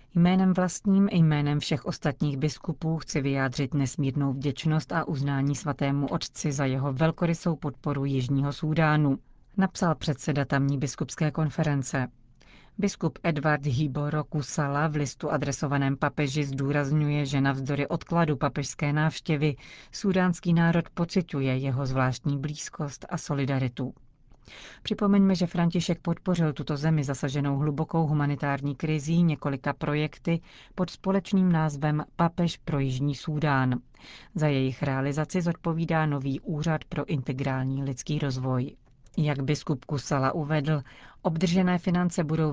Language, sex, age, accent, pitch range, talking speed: Czech, female, 40-59, native, 140-165 Hz, 120 wpm